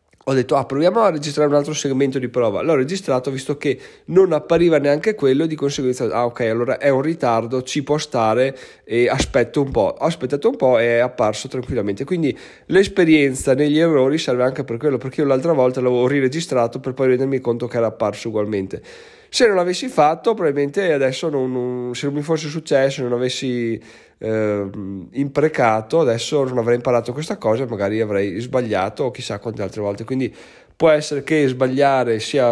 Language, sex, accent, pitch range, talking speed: Italian, male, native, 120-150 Hz, 185 wpm